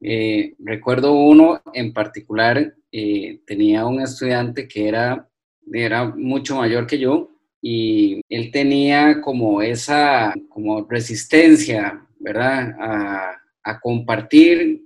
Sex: male